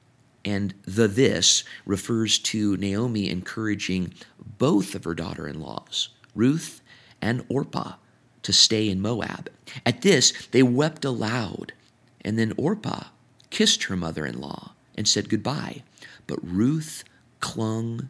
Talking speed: 115 wpm